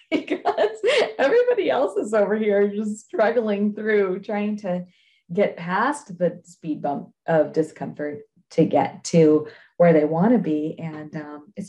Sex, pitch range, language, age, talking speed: female, 160-220 Hz, English, 30-49, 150 wpm